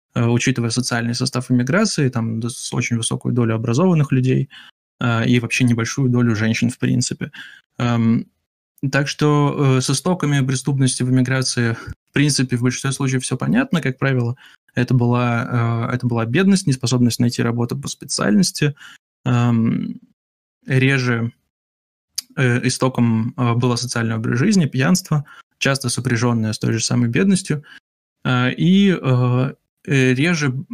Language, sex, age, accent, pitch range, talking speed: Russian, male, 20-39, native, 120-135 Hz, 115 wpm